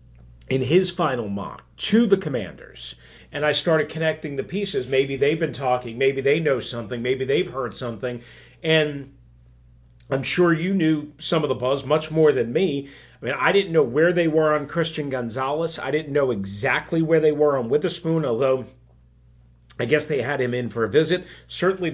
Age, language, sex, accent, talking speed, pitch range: 40-59, English, male, American, 190 wpm, 120-175 Hz